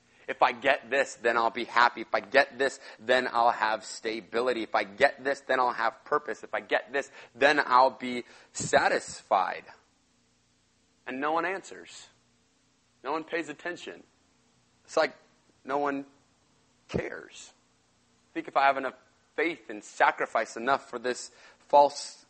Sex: male